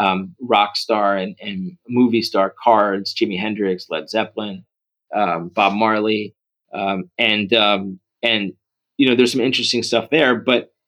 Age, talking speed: 30-49, 150 wpm